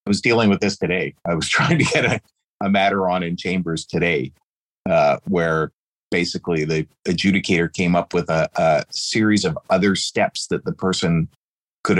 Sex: male